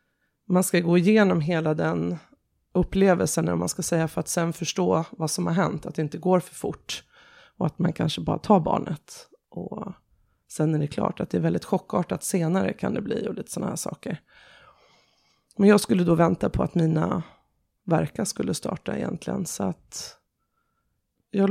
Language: Swedish